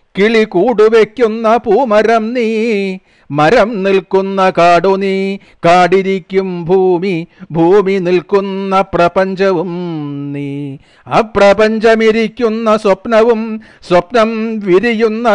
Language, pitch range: Malayalam, 175-200 Hz